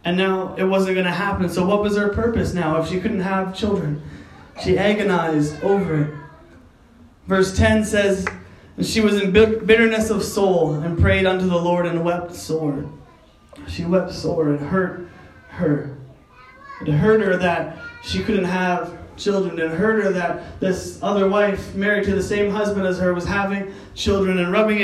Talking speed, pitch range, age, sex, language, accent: 175 wpm, 165-215 Hz, 20-39, male, English, American